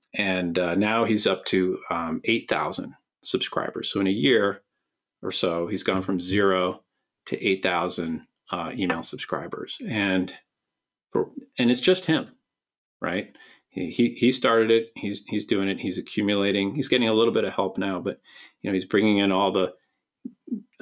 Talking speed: 175 wpm